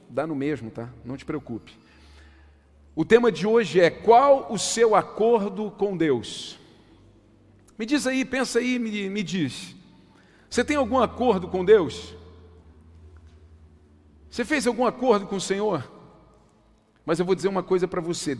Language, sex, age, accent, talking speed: Portuguese, male, 50-69, Brazilian, 155 wpm